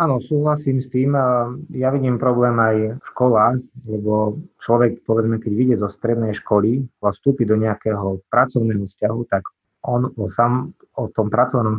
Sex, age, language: male, 20-39, Slovak